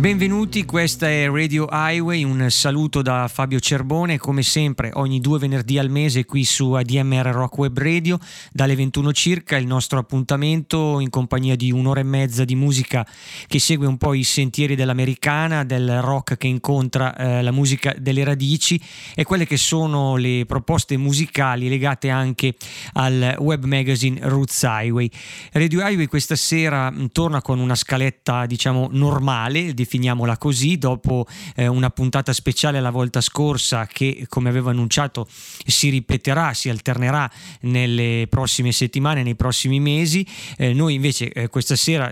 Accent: native